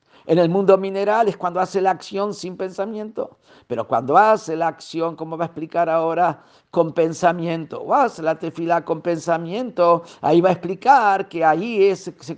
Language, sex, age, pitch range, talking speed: Spanish, male, 50-69, 170-210 Hz, 180 wpm